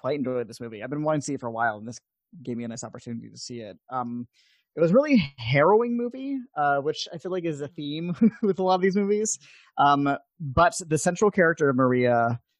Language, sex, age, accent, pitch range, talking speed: English, male, 20-39, American, 120-150 Hz, 245 wpm